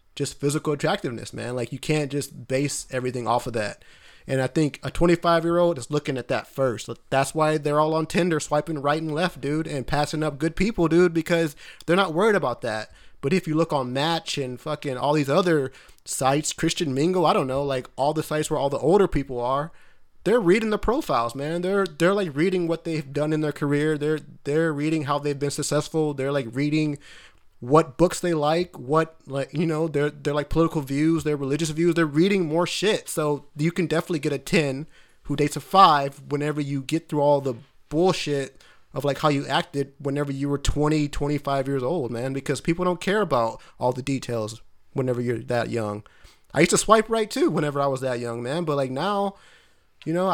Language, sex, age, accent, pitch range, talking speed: English, male, 30-49, American, 135-165 Hz, 215 wpm